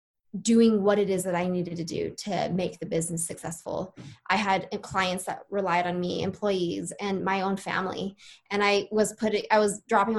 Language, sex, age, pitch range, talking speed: English, female, 20-39, 180-210 Hz, 195 wpm